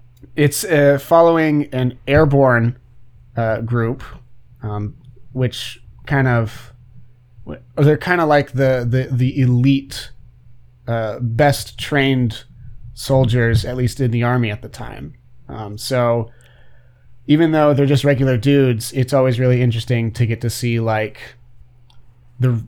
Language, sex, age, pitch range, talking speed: English, male, 30-49, 115-130 Hz, 130 wpm